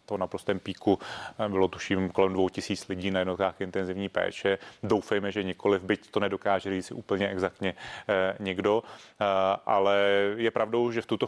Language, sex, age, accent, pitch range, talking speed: Czech, male, 30-49, native, 95-105 Hz, 160 wpm